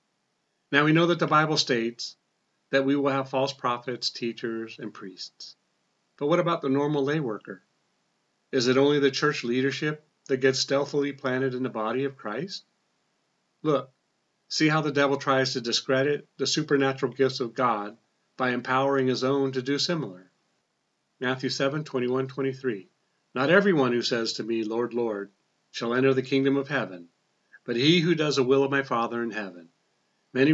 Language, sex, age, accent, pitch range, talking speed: English, male, 40-59, American, 120-150 Hz, 170 wpm